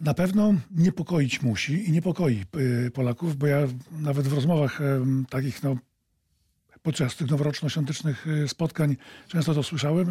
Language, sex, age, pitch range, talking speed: Polish, male, 40-59, 140-180 Hz, 120 wpm